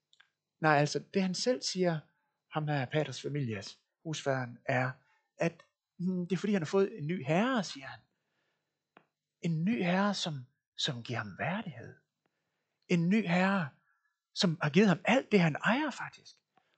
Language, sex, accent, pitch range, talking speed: Danish, male, native, 140-195 Hz, 160 wpm